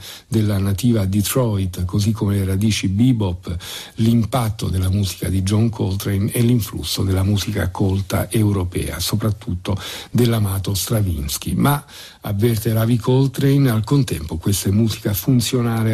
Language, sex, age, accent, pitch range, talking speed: Italian, male, 50-69, native, 95-115 Hz, 125 wpm